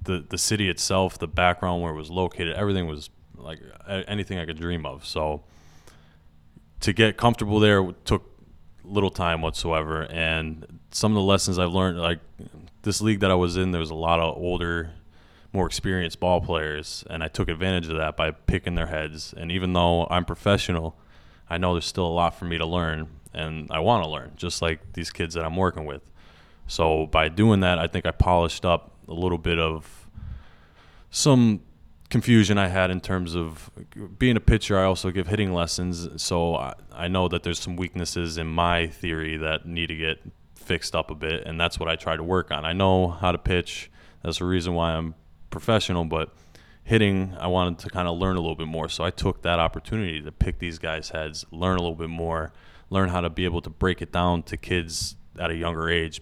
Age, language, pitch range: 20-39, English, 80-95 Hz